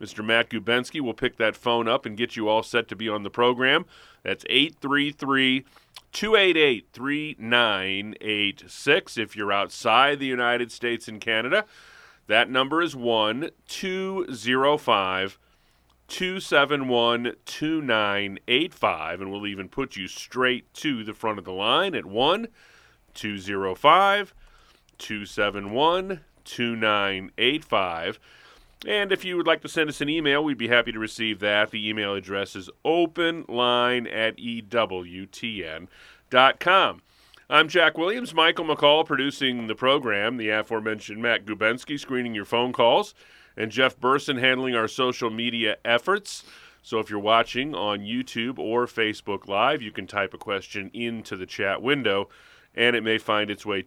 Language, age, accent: English, 30-49, American